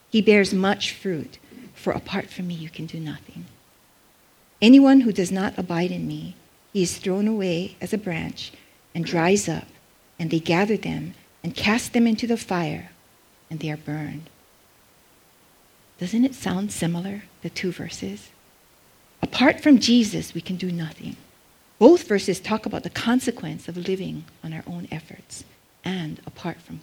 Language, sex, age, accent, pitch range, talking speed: English, female, 50-69, American, 165-215 Hz, 160 wpm